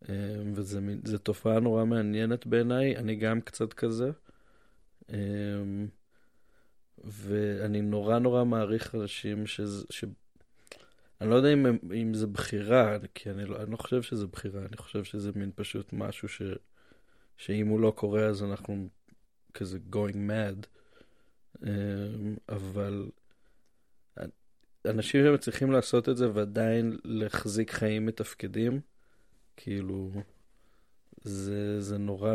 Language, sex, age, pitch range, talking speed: Hebrew, male, 20-39, 105-115 Hz, 120 wpm